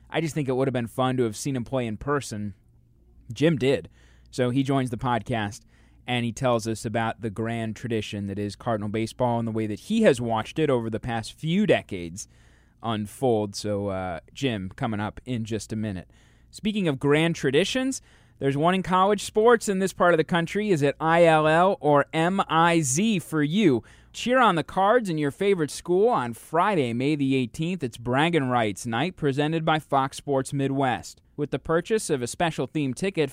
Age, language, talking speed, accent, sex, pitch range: 20-39, English, 195 wpm, American, male, 115-170 Hz